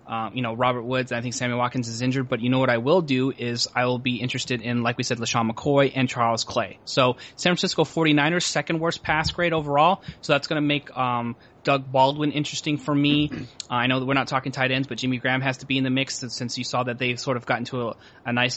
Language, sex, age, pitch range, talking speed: English, male, 20-39, 125-145 Hz, 270 wpm